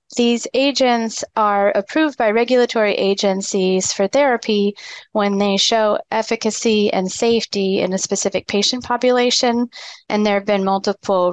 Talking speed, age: 130 wpm, 30-49